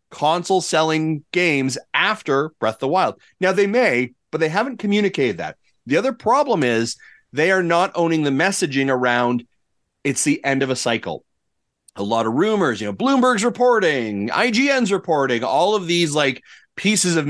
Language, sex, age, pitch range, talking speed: English, male, 30-49, 135-190 Hz, 170 wpm